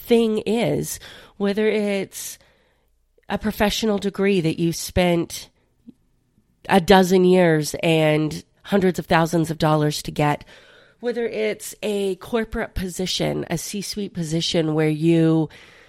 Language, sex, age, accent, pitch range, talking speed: English, female, 30-49, American, 160-215 Hz, 115 wpm